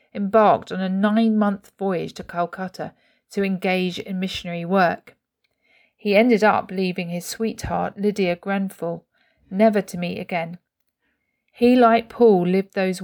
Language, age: English, 40-59